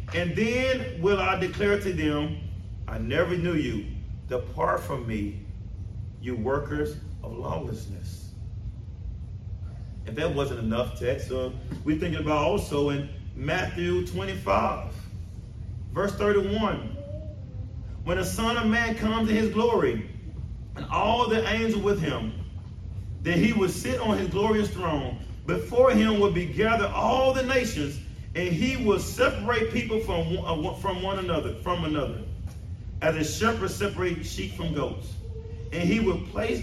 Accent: American